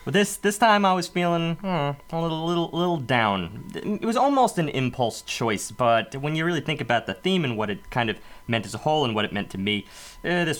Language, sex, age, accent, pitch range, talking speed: English, male, 30-49, American, 100-165 Hz, 255 wpm